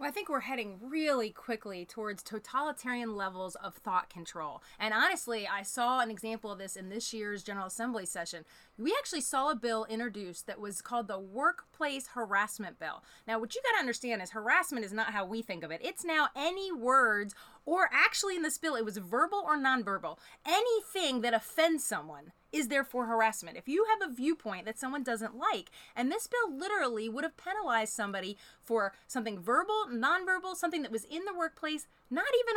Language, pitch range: English, 215-320 Hz